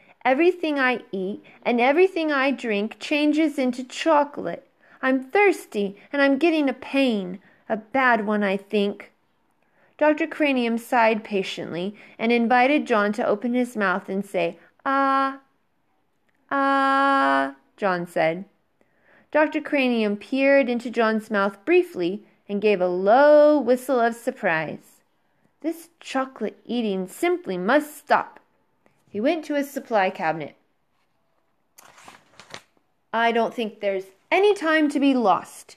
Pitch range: 200-285 Hz